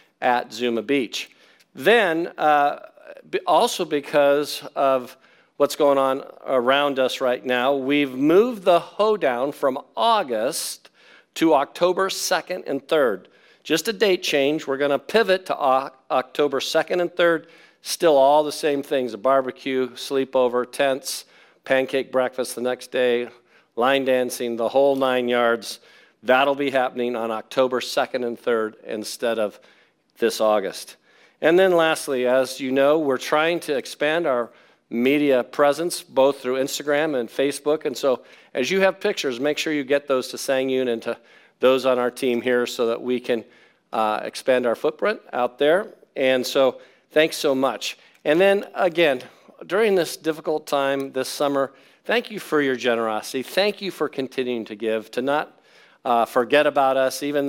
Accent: American